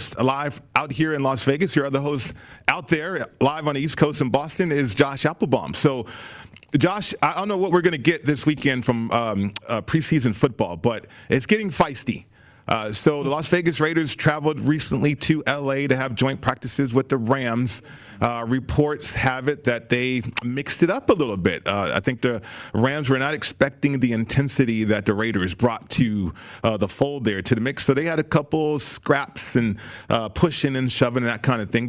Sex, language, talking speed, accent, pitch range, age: male, English, 205 wpm, American, 120-155 Hz, 40-59